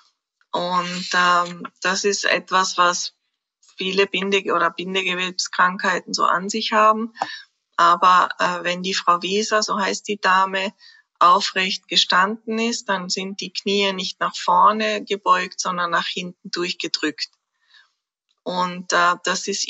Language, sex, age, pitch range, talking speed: German, female, 20-39, 180-210 Hz, 130 wpm